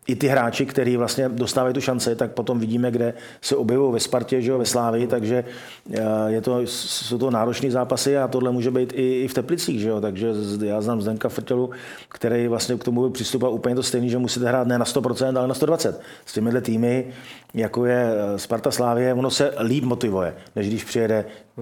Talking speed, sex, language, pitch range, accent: 200 wpm, male, Czech, 115-130 Hz, native